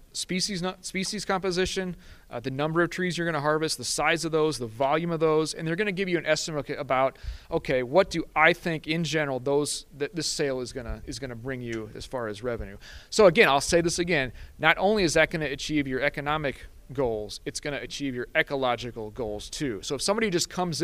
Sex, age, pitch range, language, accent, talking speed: male, 30-49, 125-155 Hz, English, American, 235 wpm